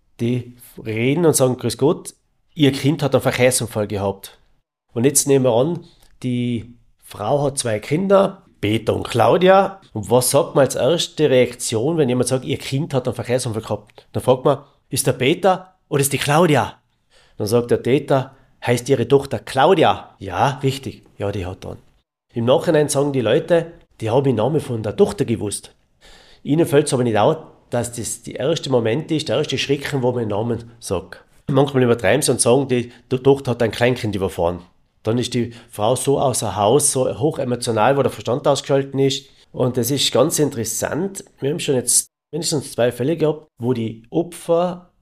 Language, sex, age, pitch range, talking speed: German, male, 40-59, 120-145 Hz, 185 wpm